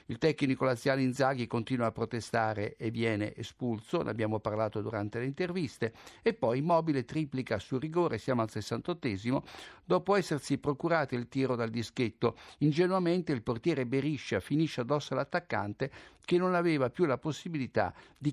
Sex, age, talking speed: male, 60-79, 150 wpm